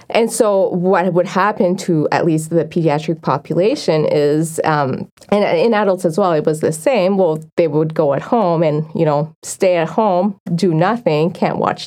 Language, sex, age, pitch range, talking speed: English, female, 20-39, 160-190 Hz, 195 wpm